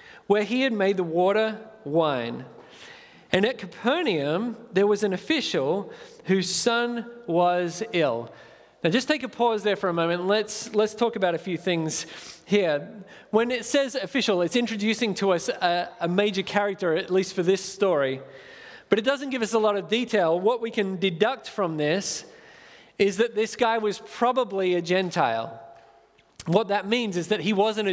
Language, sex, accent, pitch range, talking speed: English, male, Australian, 180-225 Hz, 175 wpm